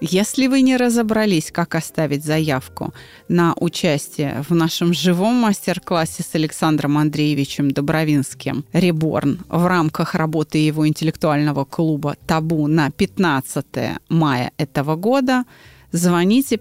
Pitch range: 155-205 Hz